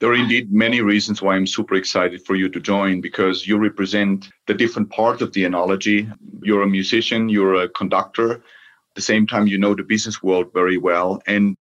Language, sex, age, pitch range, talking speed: English, male, 40-59, 95-110 Hz, 205 wpm